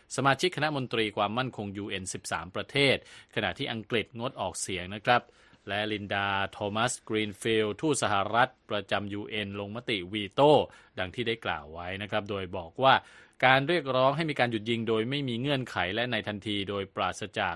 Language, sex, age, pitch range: Thai, male, 20-39, 100-125 Hz